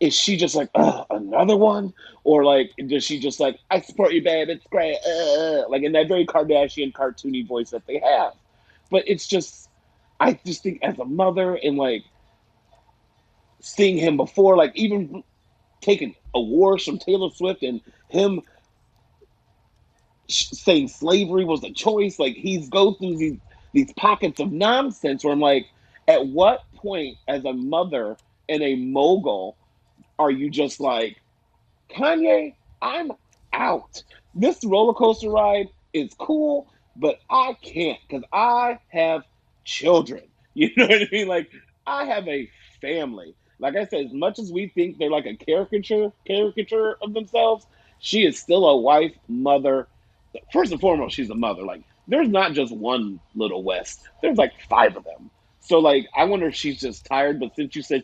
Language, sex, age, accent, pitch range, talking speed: English, male, 30-49, American, 135-205 Hz, 165 wpm